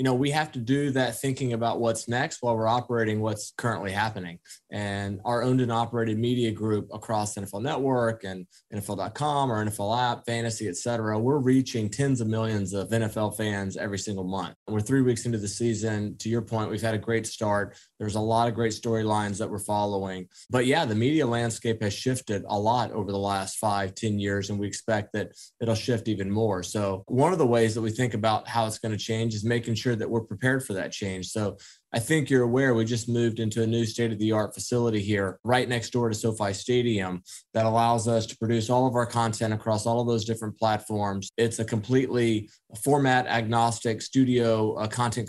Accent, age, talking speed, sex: American, 20-39, 210 wpm, male